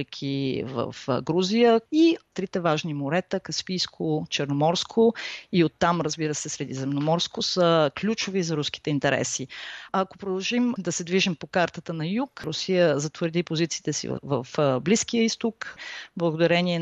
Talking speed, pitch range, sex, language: 135 wpm, 155-195 Hz, female, Bulgarian